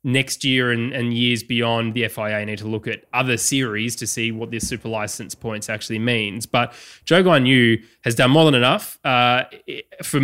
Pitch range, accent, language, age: 115-130 Hz, Australian, English, 20-39